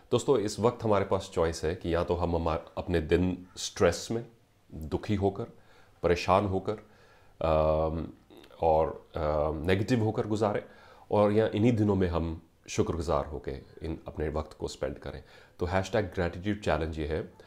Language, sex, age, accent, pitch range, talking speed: English, male, 30-49, Indian, 85-110 Hz, 145 wpm